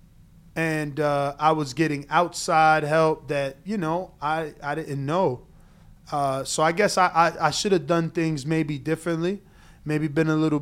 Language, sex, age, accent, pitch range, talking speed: English, male, 20-39, American, 150-175 Hz, 175 wpm